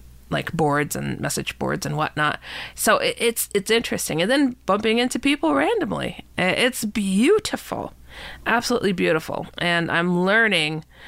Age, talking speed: 40-59, 130 wpm